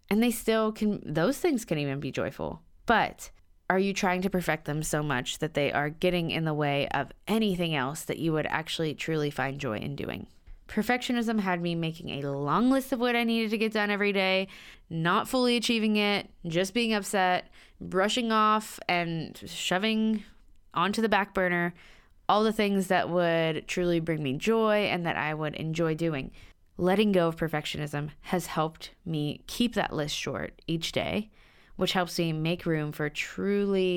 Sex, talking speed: female, 185 wpm